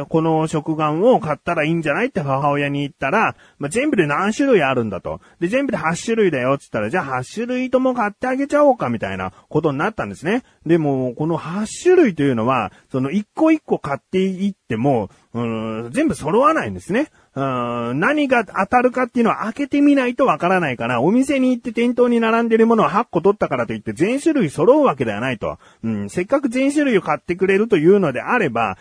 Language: Japanese